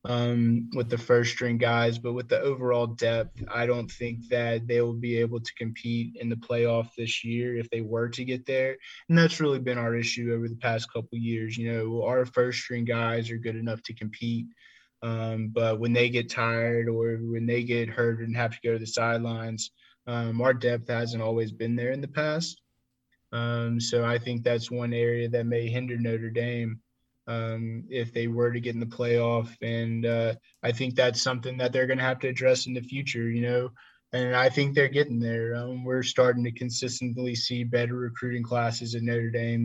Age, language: 20-39, English